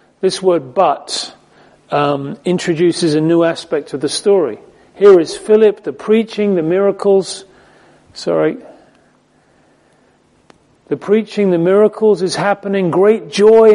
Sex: male